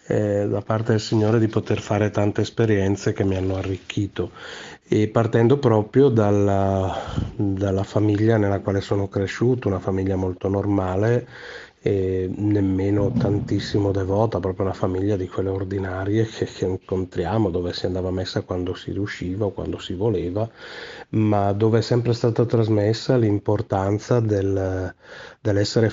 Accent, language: native, Italian